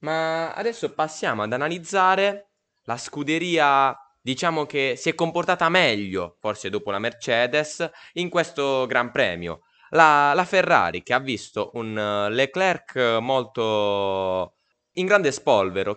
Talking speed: 125 wpm